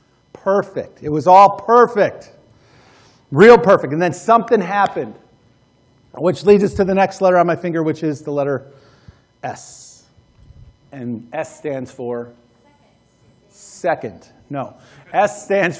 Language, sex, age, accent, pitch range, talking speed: English, male, 40-59, American, 140-195 Hz, 130 wpm